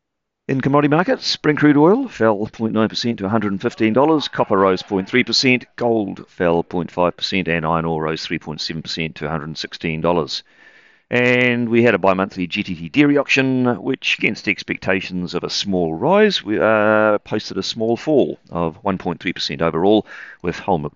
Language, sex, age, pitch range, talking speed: English, male, 40-59, 85-115 Hz, 145 wpm